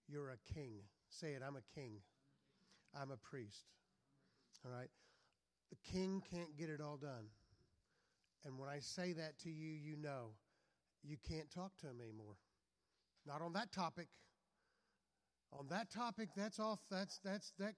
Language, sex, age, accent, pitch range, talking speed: English, male, 50-69, American, 135-185 Hz, 160 wpm